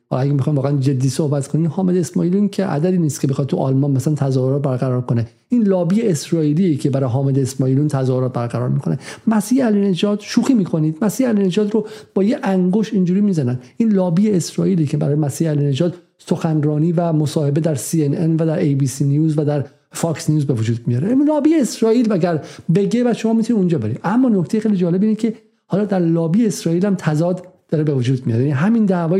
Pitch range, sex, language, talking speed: 140-185 Hz, male, Persian, 190 wpm